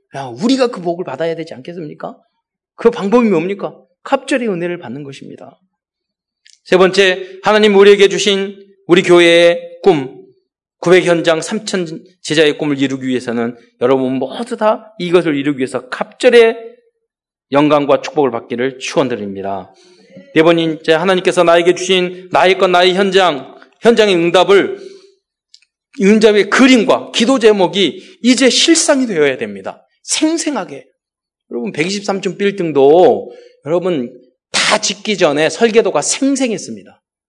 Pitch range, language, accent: 170-215 Hz, Korean, native